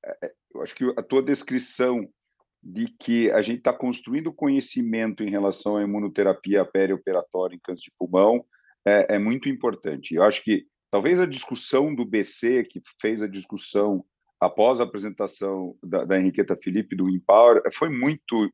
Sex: male